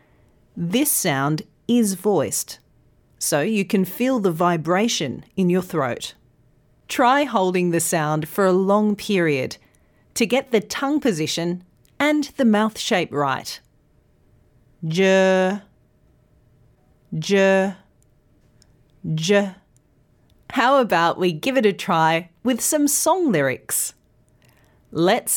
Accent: Australian